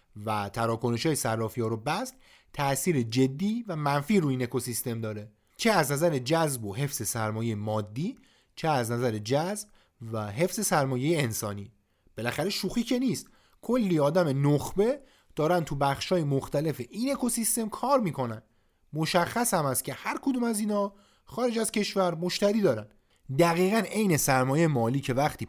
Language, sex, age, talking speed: Persian, male, 30-49, 150 wpm